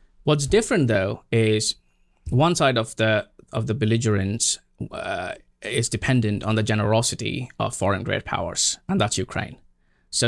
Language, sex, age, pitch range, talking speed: English, male, 20-39, 110-145 Hz, 145 wpm